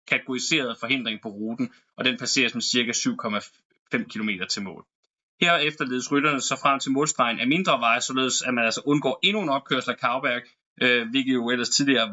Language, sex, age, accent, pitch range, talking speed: Danish, male, 20-39, native, 125-170 Hz, 185 wpm